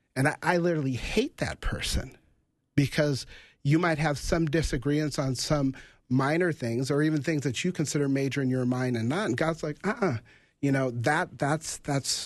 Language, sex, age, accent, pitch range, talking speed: English, male, 40-59, American, 125-155 Hz, 190 wpm